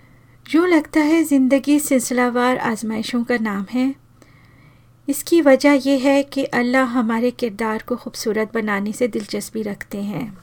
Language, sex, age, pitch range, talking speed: Hindi, female, 40-59, 210-260 Hz, 140 wpm